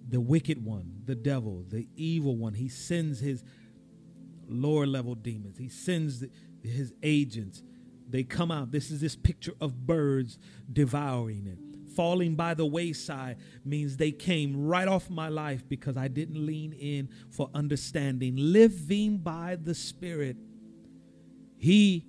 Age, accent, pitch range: 40-59, American, 130-185 Hz